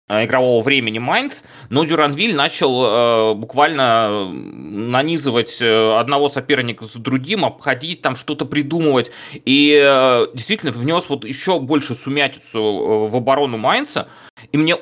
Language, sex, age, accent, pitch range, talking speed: Russian, male, 20-39, native, 110-145 Hz, 125 wpm